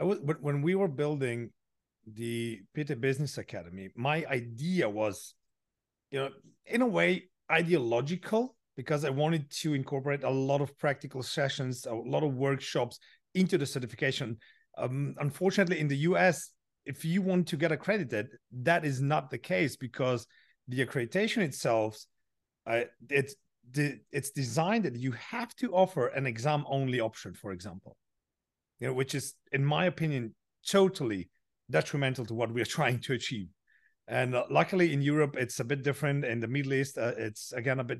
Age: 40-59